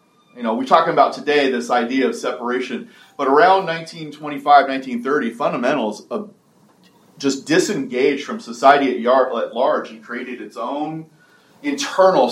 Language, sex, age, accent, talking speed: English, male, 30-49, American, 125 wpm